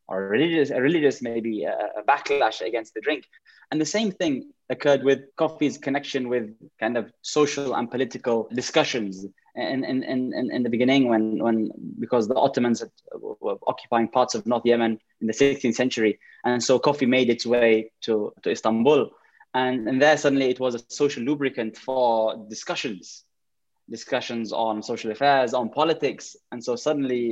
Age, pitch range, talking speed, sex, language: 10-29, 110-135 Hz, 170 wpm, male, English